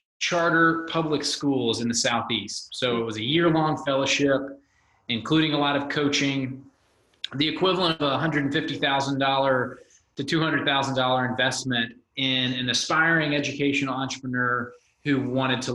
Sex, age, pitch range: male, 30-49, 135-175 Hz